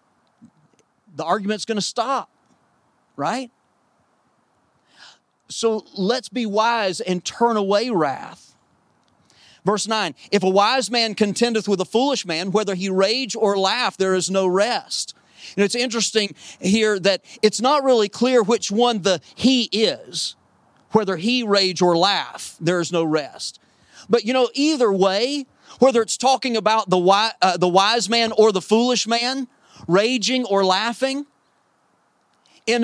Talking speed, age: 140 wpm, 40-59